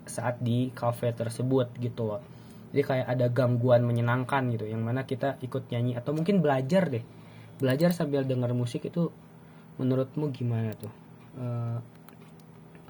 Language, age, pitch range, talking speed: Indonesian, 20-39, 120-140 Hz, 135 wpm